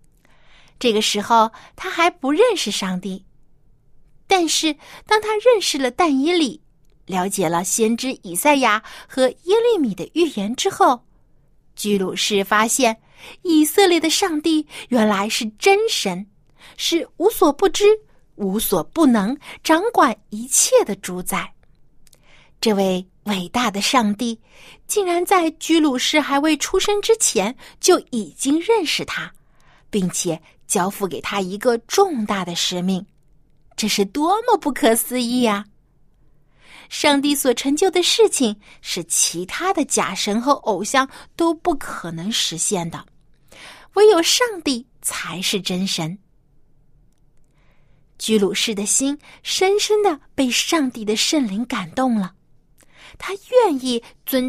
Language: Chinese